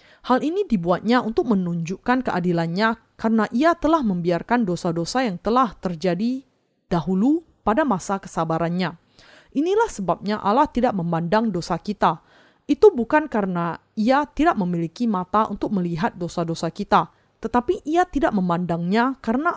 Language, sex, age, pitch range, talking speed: Indonesian, female, 30-49, 175-250 Hz, 125 wpm